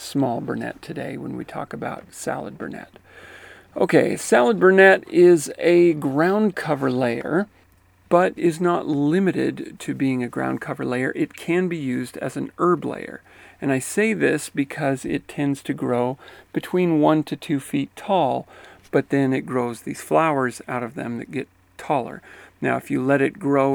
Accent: American